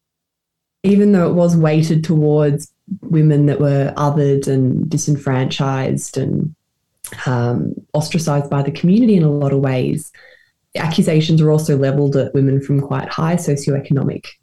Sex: female